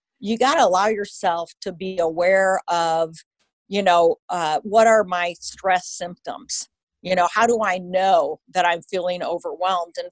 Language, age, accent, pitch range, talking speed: English, 50-69, American, 175-205 Hz, 165 wpm